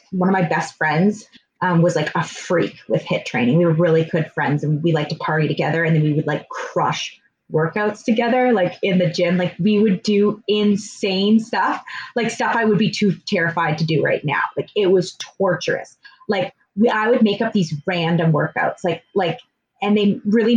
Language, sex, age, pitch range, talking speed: English, female, 20-39, 170-225 Hz, 205 wpm